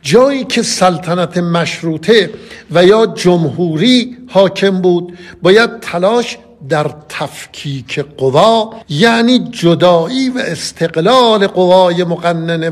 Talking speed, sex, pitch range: 95 wpm, male, 155-205 Hz